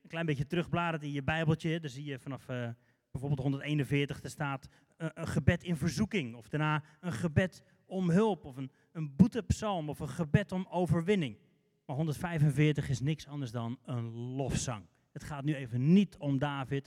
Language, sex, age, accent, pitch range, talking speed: Dutch, male, 30-49, Dutch, 135-165 Hz, 185 wpm